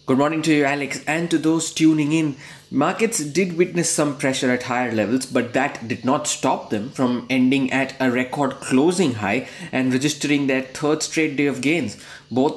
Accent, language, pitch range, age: Indian, English, 135-165 Hz, 20-39